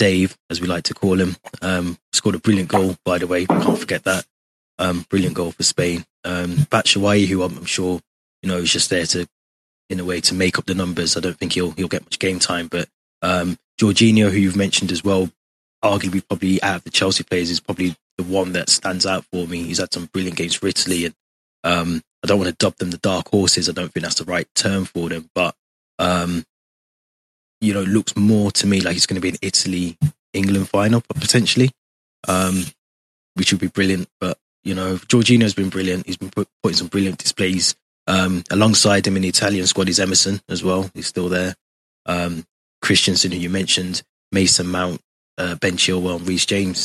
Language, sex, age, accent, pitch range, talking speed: English, male, 20-39, British, 90-100 Hz, 210 wpm